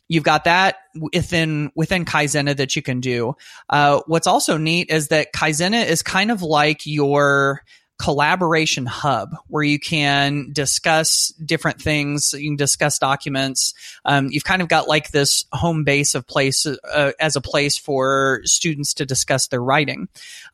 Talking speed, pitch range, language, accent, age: 165 wpm, 140-160 Hz, English, American, 30-49